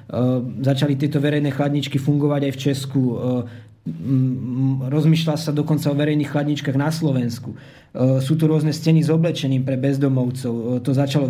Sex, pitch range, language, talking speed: male, 135-145 Hz, Slovak, 140 wpm